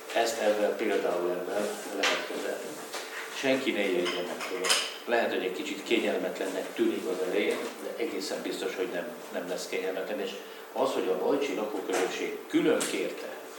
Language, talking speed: Hungarian, 140 wpm